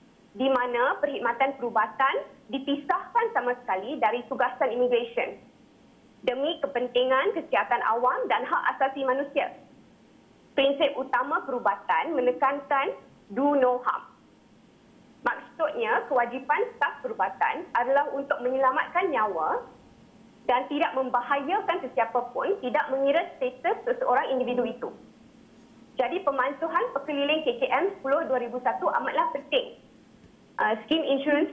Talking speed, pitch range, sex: 105 wpm, 250-315 Hz, female